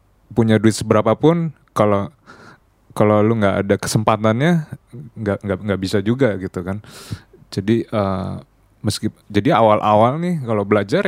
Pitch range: 100-120 Hz